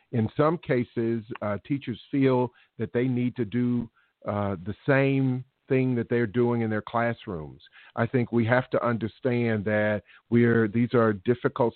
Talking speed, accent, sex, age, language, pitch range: 170 wpm, American, male, 50-69, English, 115-130 Hz